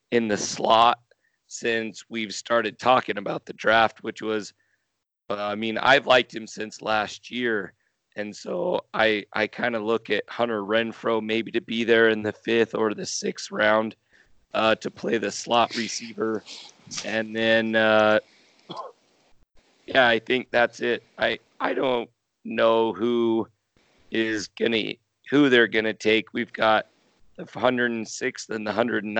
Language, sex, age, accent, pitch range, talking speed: English, male, 30-49, American, 110-115 Hz, 155 wpm